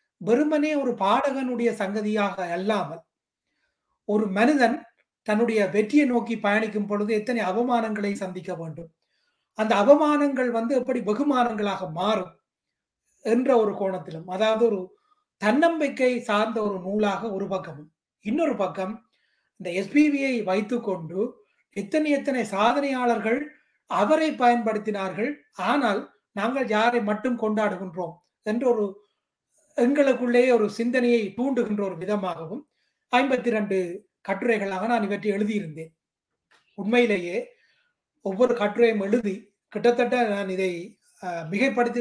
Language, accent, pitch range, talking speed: Tamil, native, 195-245 Hz, 95 wpm